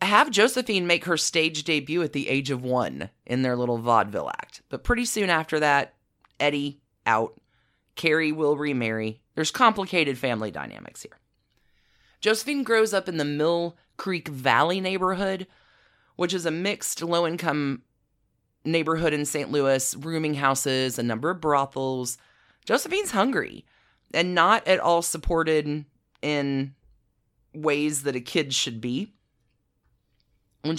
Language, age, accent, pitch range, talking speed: English, 30-49, American, 130-165 Hz, 135 wpm